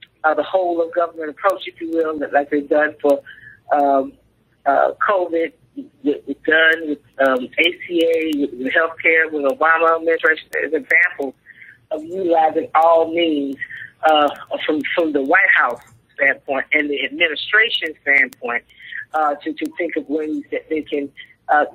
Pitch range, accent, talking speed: 150-240 Hz, American, 155 wpm